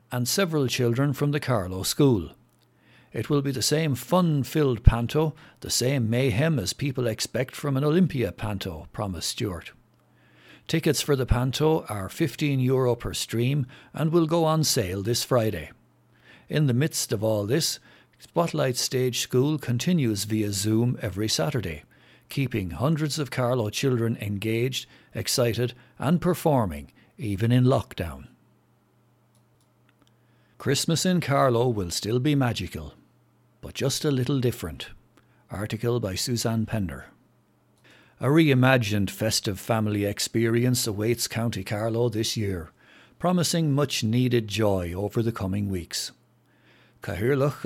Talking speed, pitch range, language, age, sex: 130 wpm, 110-135 Hz, English, 60-79, male